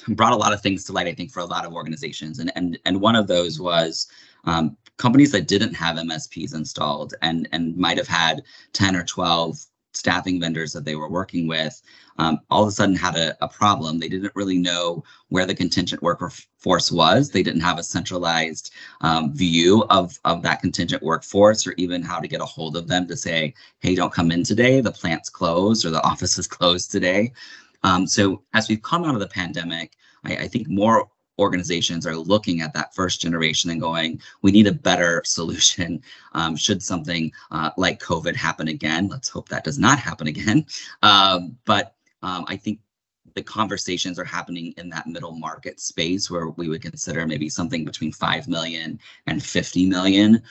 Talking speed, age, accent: 200 wpm, 30-49, American